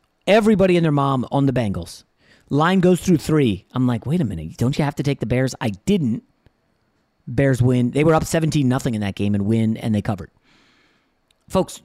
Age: 30-49